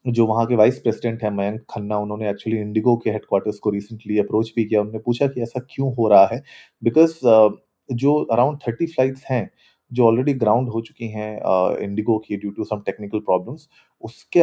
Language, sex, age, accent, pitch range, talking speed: Hindi, male, 30-49, native, 105-125 Hz, 195 wpm